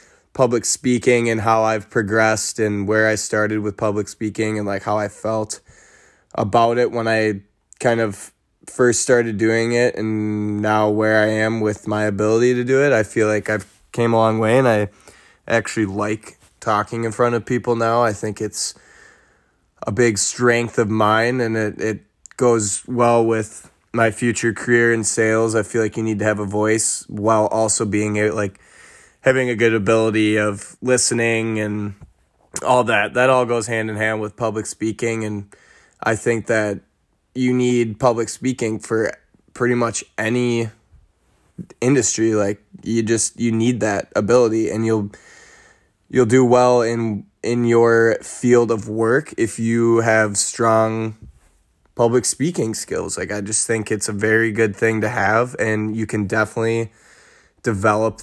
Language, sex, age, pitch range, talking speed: English, male, 20-39, 105-115 Hz, 165 wpm